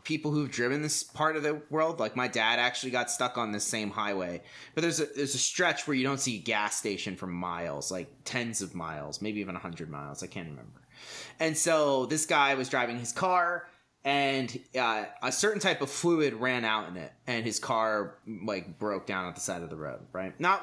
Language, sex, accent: English, male, American